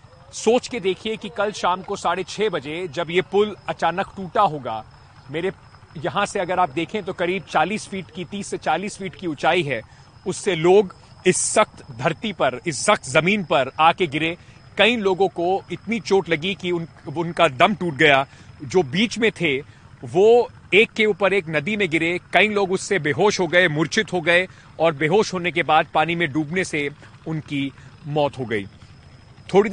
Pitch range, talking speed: 145-190 Hz, 190 wpm